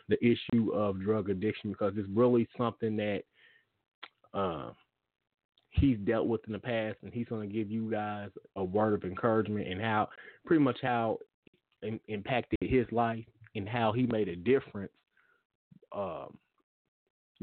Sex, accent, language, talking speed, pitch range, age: male, American, English, 150 wpm, 105-125 Hz, 20-39